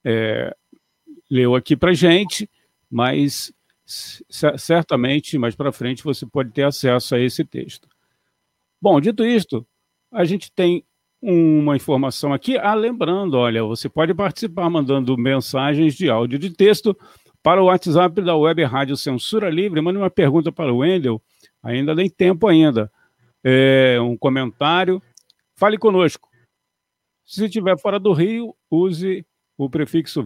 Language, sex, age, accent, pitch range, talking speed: Portuguese, male, 50-69, Brazilian, 135-185 Hz, 140 wpm